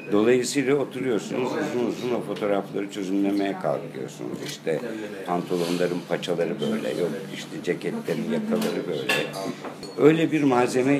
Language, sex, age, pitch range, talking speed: Turkish, male, 60-79, 95-125 Hz, 110 wpm